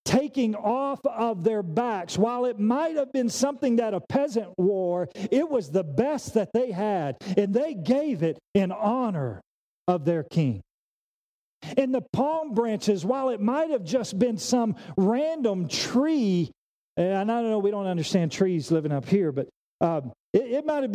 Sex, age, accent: male, 40-59, American